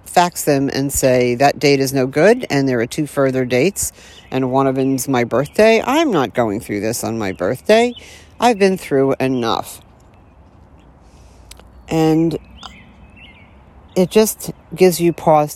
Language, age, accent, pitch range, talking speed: English, 50-69, American, 125-165 Hz, 150 wpm